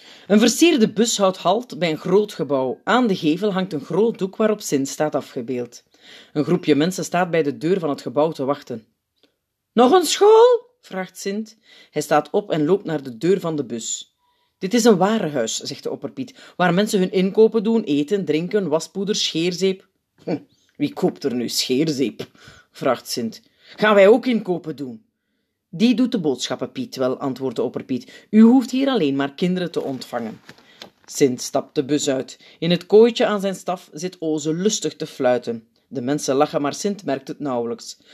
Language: Dutch